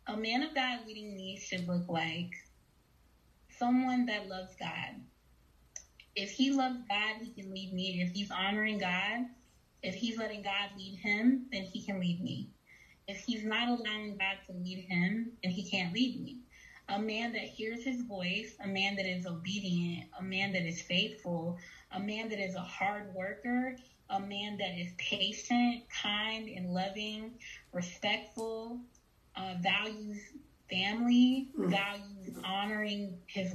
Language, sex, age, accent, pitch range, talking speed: English, female, 20-39, American, 185-225 Hz, 155 wpm